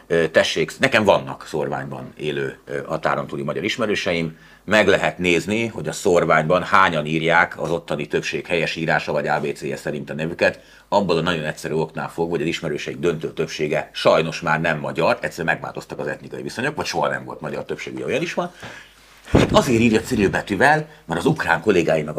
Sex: male